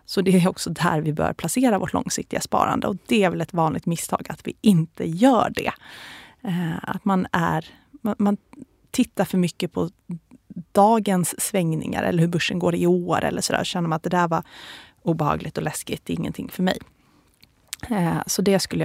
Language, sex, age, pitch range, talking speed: Swedish, female, 30-49, 170-200 Hz, 180 wpm